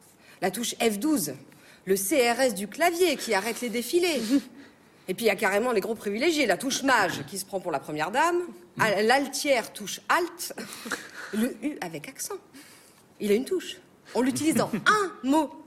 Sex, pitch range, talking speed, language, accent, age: female, 205-295 Hz, 180 wpm, French, French, 40-59